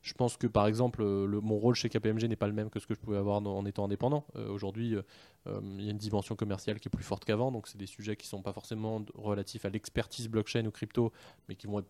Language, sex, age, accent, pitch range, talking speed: French, male, 20-39, French, 95-110 Hz, 290 wpm